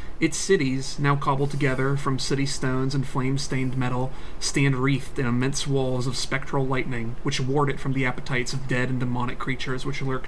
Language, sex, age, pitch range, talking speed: English, male, 30-49, 130-145 Hz, 185 wpm